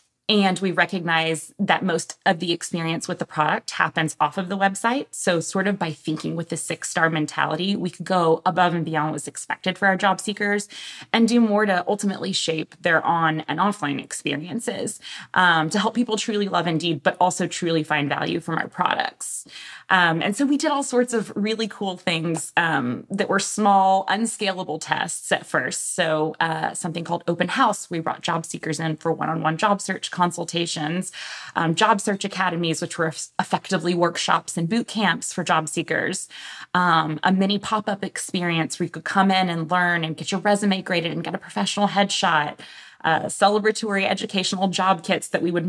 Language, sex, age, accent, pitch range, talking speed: English, female, 20-39, American, 165-200 Hz, 190 wpm